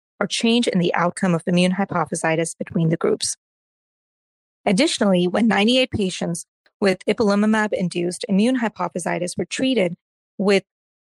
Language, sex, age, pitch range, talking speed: English, female, 30-49, 170-210 Hz, 125 wpm